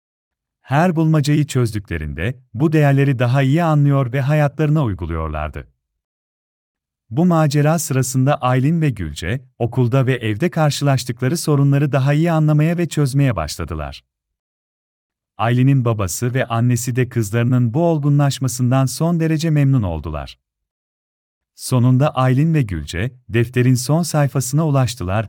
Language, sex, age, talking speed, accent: Turkish, male, 40-59, 115 wpm, native